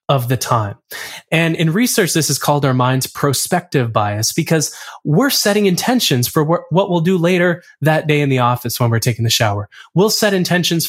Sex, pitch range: male, 130-180 Hz